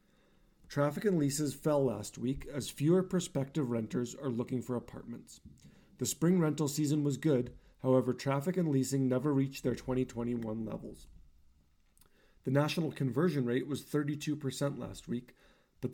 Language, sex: English, male